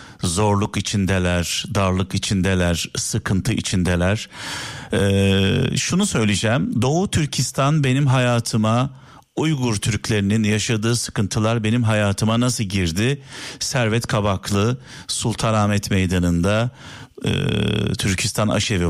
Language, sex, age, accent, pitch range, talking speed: Turkish, male, 50-69, native, 95-120 Hz, 85 wpm